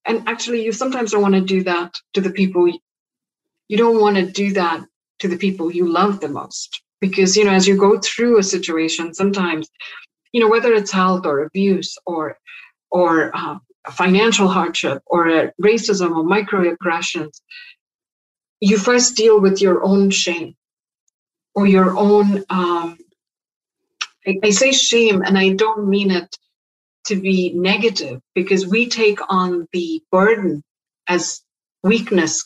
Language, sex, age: English, female, 50-69